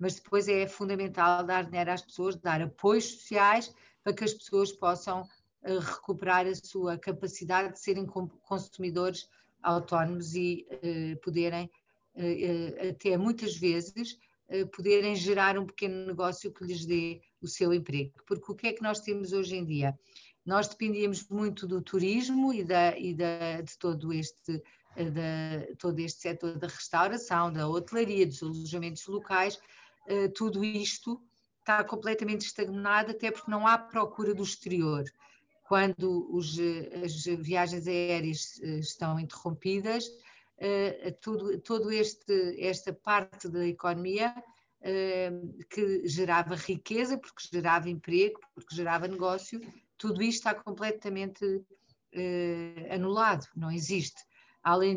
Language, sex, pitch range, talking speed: Portuguese, female, 175-205 Hz, 120 wpm